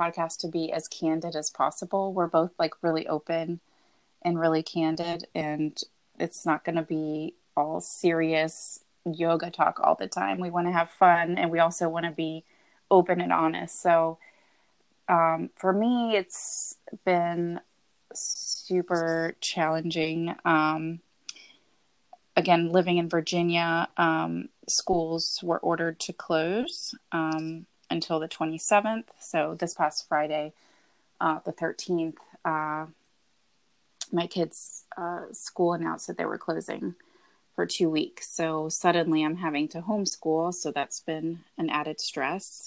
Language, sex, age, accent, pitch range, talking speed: English, female, 30-49, American, 160-175 Hz, 135 wpm